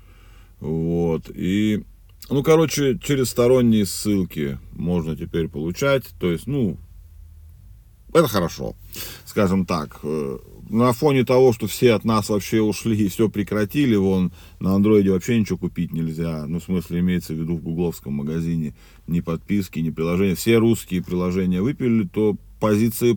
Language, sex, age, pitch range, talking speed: Russian, male, 40-59, 85-115 Hz, 140 wpm